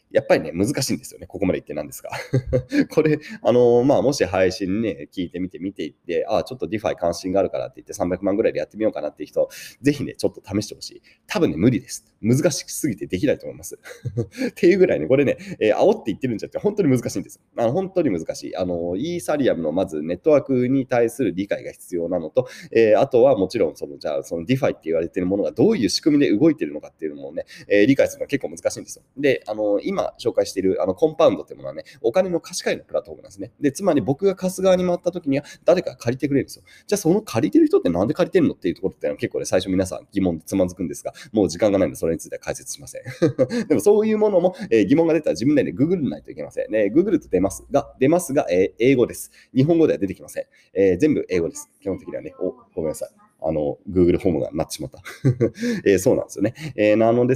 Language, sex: Japanese, male